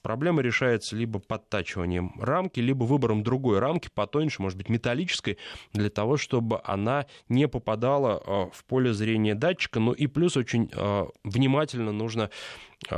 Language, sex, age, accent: Russian, male, 20-39, native